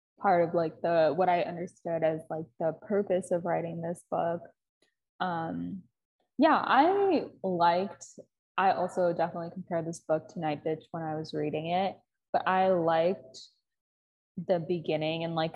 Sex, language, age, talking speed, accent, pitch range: female, English, 20-39, 155 wpm, American, 170-210 Hz